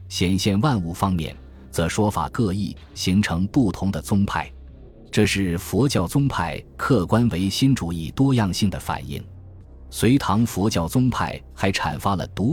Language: Chinese